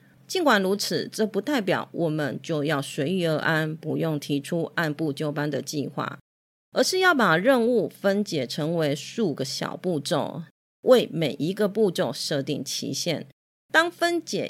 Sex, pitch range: female, 150-205 Hz